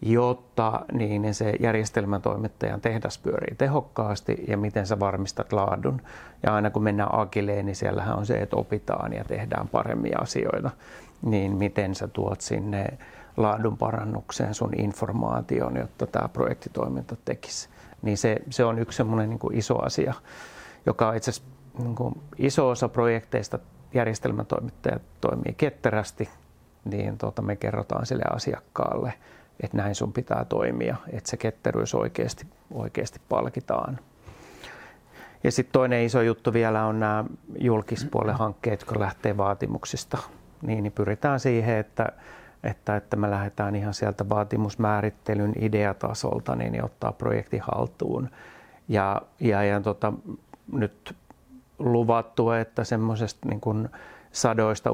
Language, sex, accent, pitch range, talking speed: Finnish, male, native, 105-115 Hz, 120 wpm